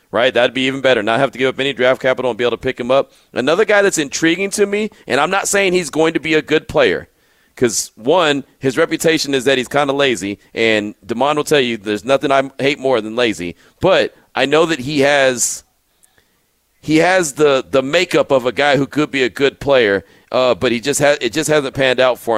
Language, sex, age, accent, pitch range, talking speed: English, male, 40-59, American, 110-150 Hz, 245 wpm